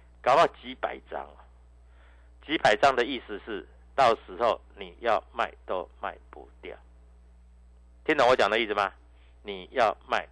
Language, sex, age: Chinese, male, 50-69